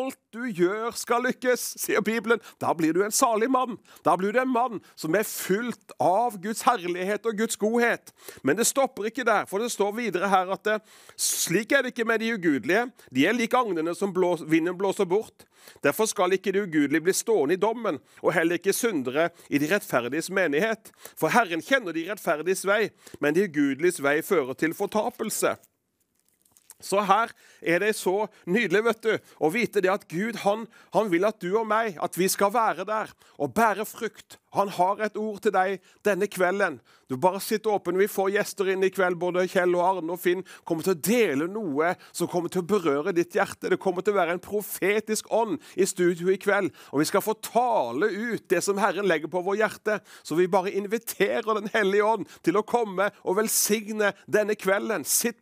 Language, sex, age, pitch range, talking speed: English, male, 40-59, 185-230 Hz, 200 wpm